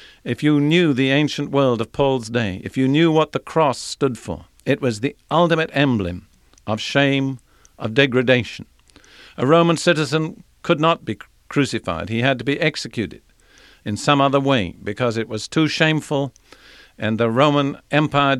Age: 50-69